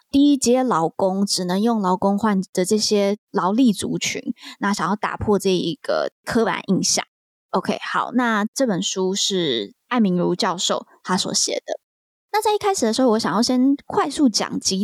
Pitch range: 190-255 Hz